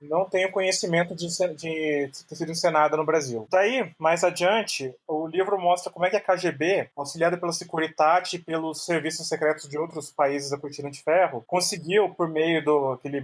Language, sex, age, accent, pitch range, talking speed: Portuguese, male, 20-39, Brazilian, 155-200 Hz, 185 wpm